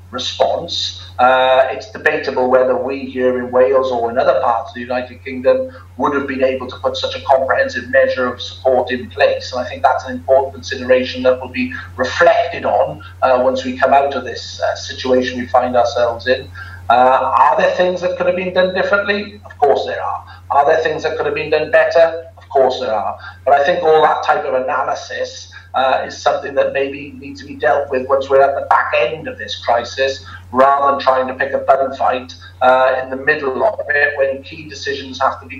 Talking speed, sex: 220 wpm, male